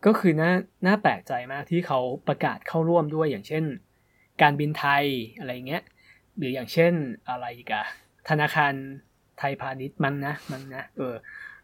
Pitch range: 135-175 Hz